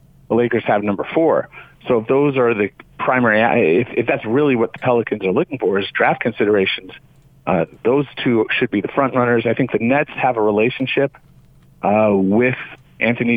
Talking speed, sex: 185 wpm, male